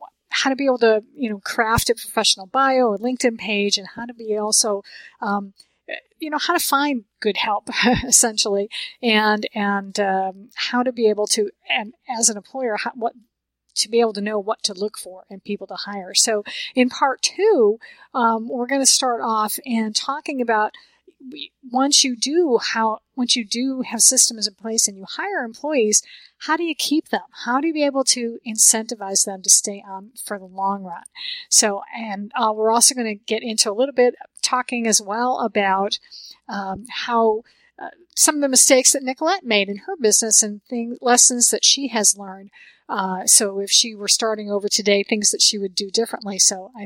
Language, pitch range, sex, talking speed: English, 205-260 Hz, female, 200 wpm